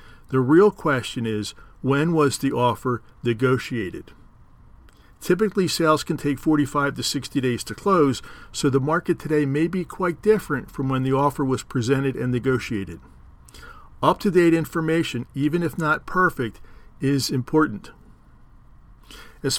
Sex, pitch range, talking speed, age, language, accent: male, 125-155 Hz, 135 wpm, 50-69, English, American